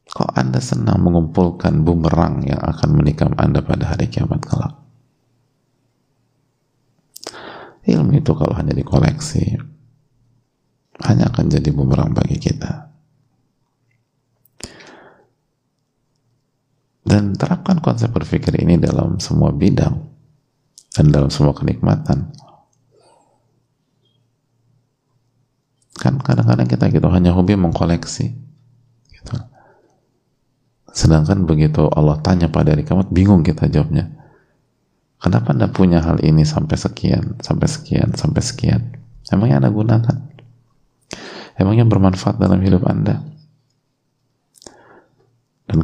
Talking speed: 95 wpm